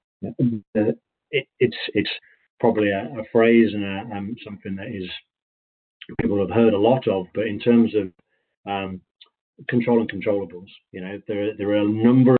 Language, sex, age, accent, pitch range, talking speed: English, male, 30-49, British, 95-115 Hz, 150 wpm